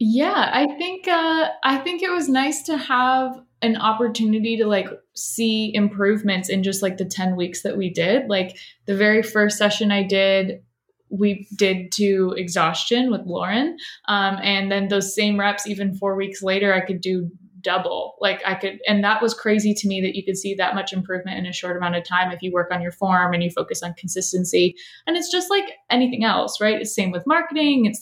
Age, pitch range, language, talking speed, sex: 20-39, 190-240 Hz, English, 210 wpm, female